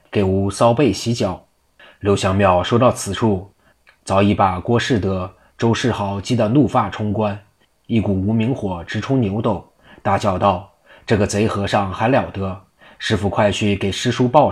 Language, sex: Chinese, male